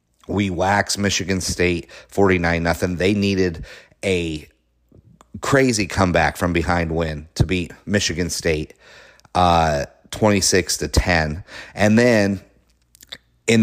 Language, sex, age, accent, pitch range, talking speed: English, male, 30-49, American, 80-100 Hz, 115 wpm